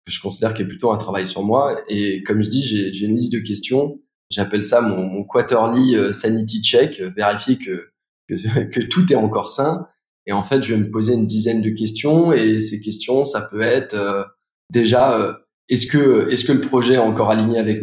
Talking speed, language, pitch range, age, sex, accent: 220 wpm, French, 105-125 Hz, 20-39, male, French